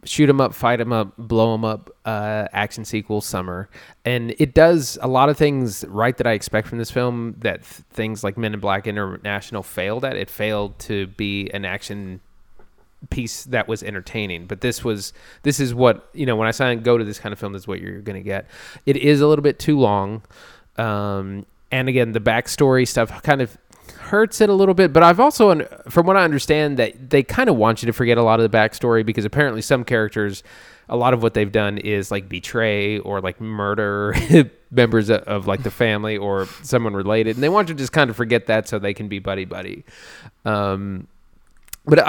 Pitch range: 100-125 Hz